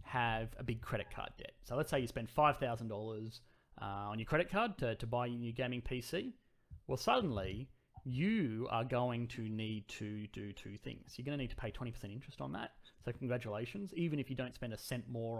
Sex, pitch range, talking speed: male, 105-130 Hz, 220 wpm